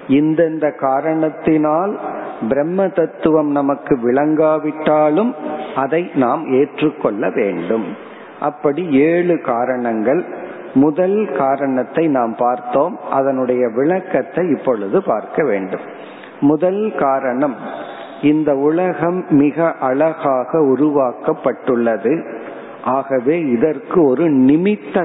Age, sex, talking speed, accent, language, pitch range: 50-69, male, 70 wpm, native, Tamil, 130-160 Hz